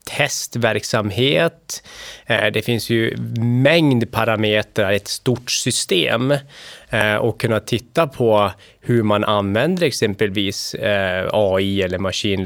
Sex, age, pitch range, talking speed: male, 20-39, 105-125 Hz, 95 wpm